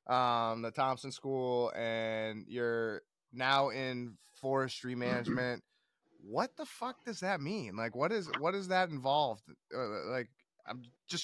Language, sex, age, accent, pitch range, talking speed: English, male, 20-39, American, 110-145 Hz, 145 wpm